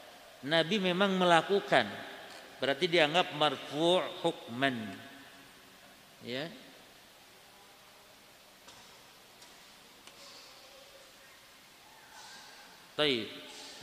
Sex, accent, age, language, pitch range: male, native, 50-69, Indonesian, 140-165 Hz